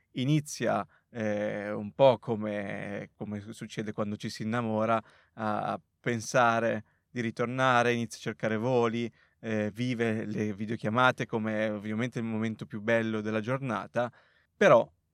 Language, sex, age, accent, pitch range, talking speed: Italian, male, 20-39, native, 110-125 Hz, 125 wpm